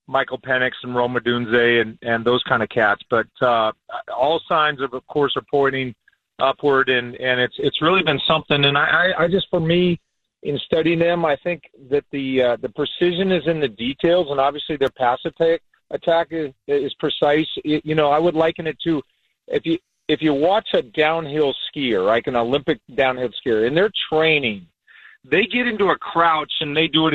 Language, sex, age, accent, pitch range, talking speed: English, male, 40-59, American, 140-185 Hz, 200 wpm